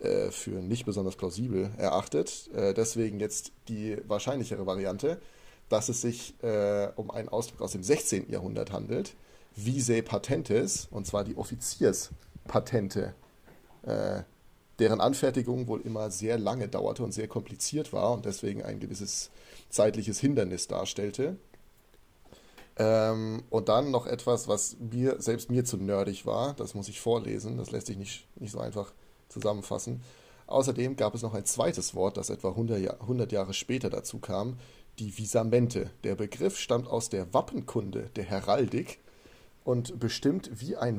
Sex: male